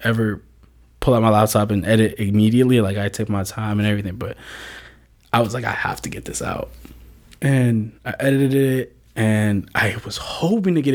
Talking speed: 190 wpm